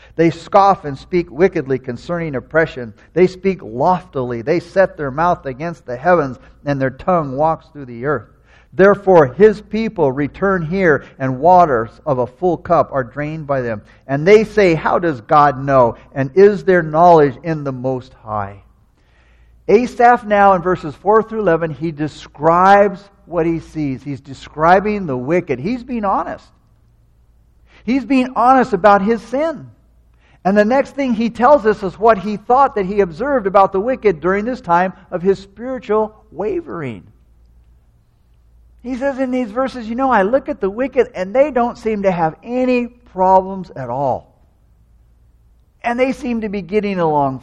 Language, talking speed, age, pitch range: English, 165 wpm, 50-69, 135-210 Hz